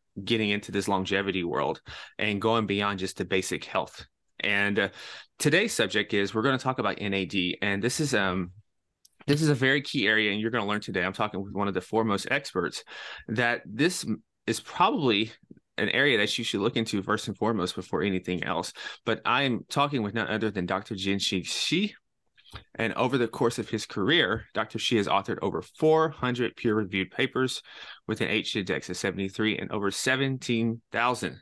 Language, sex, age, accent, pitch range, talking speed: English, male, 30-49, American, 100-120 Hz, 190 wpm